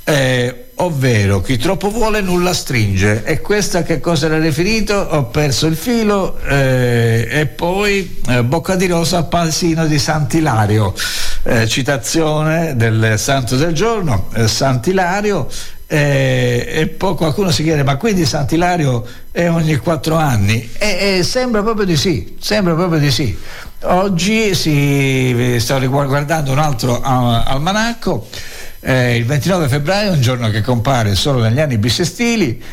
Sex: male